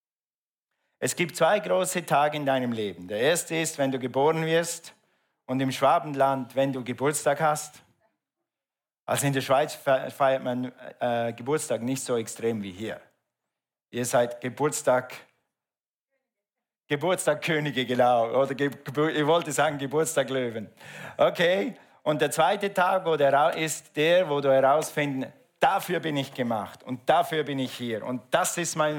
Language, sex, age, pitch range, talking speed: German, male, 50-69, 130-155 Hz, 145 wpm